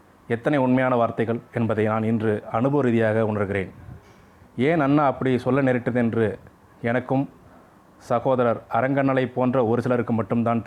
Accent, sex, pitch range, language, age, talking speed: native, male, 110-130 Hz, Tamil, 30-49, 120 wpm